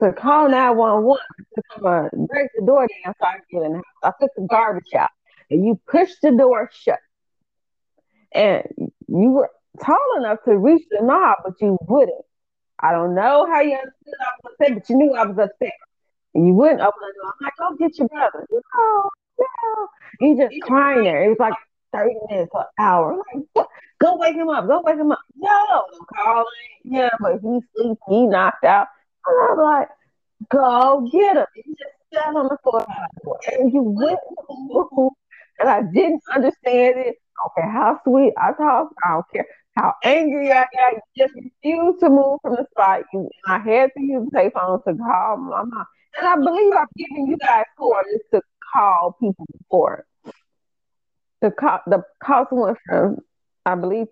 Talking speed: 185 wpm